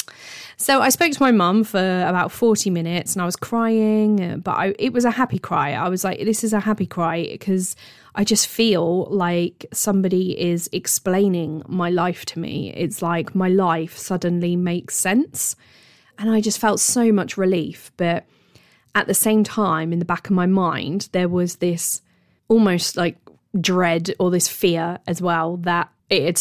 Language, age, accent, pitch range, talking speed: English, 20-39, British, 170-205 Hz, 180 wpm